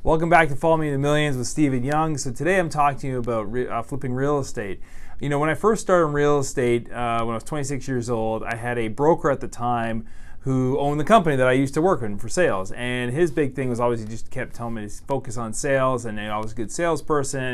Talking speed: 275 wpm